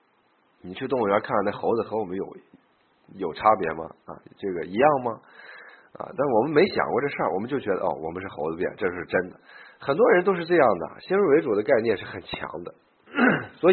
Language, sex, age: Chinese, male, 50-69